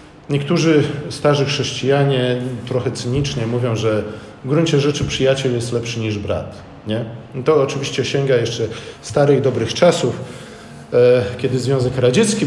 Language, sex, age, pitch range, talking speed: Polish, male, 40-59, 110-140 Hz, 135 wpm